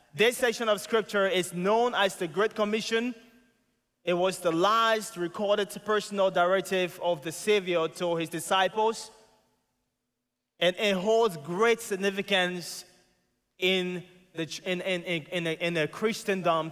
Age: 30-49